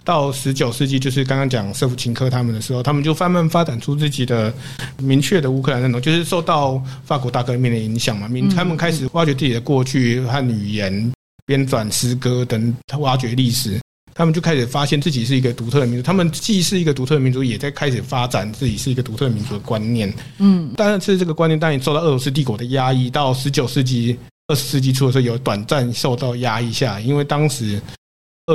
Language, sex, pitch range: Chinese, male, 120-150 Hz